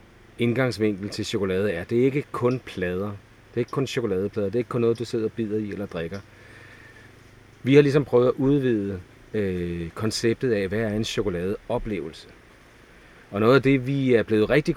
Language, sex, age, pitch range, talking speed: Danish, male, 40-59, 100-120 Hz, 185 wpm